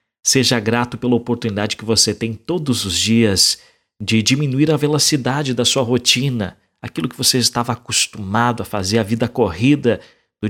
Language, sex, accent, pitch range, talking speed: English, male, Brazilian, 105-125 Hz, 160 wpm